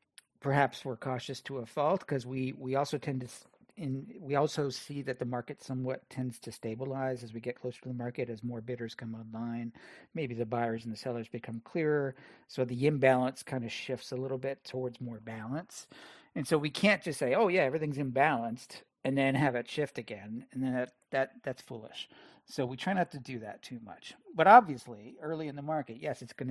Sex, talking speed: male, 225 wpm